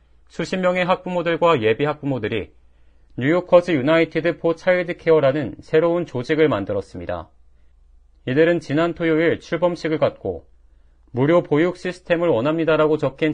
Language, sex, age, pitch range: Korean, male, 40-59, 100-165 Hz